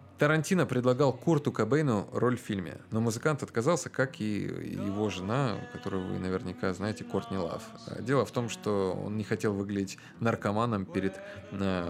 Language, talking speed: Russian, 155 wpm